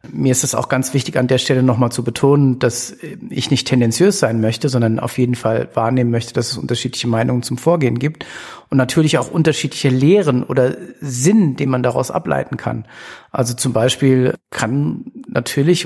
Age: 50-69